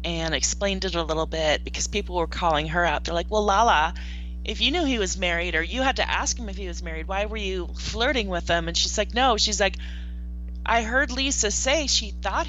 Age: 30-49